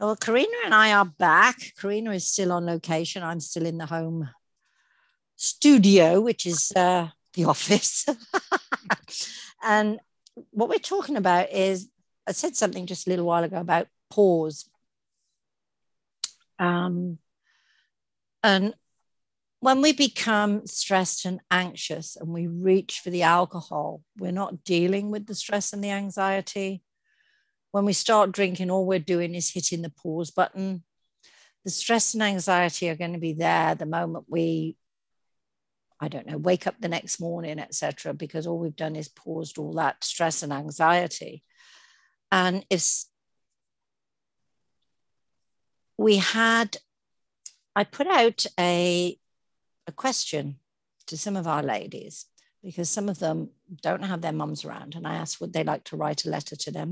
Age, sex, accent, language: 60-79, female, British, English